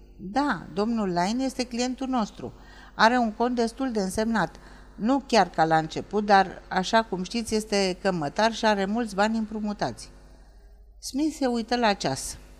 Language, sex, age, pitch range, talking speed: Romanian, female, 50-69, 180-225 Hz, 155 wpm